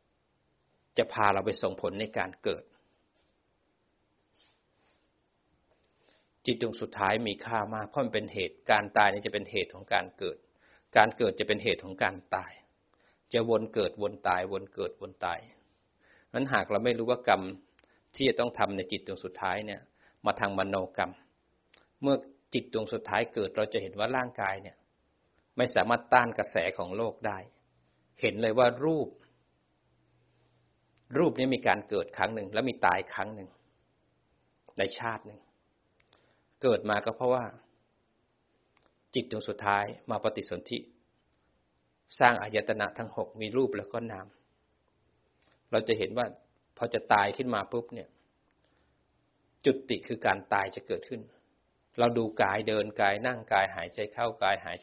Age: 60-79